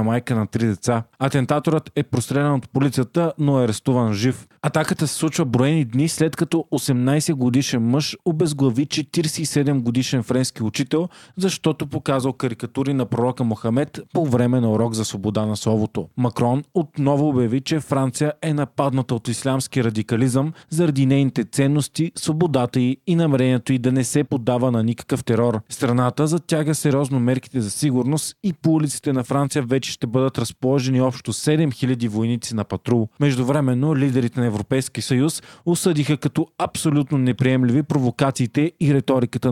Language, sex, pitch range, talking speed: Bulgarian, male, 125-150 Hz, 150 wpm